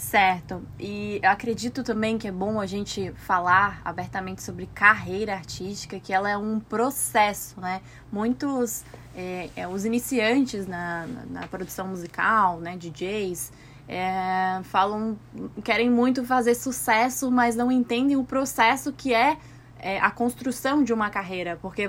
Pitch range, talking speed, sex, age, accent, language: 190-240 Hz, 145 wpm, female, 20-39, Brazilian, Portuguese